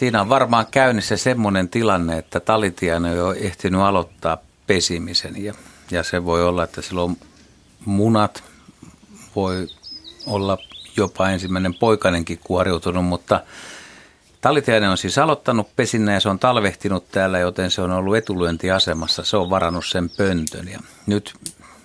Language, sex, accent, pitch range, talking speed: Finnish, male, native, 85-105 Hz, 140 wpm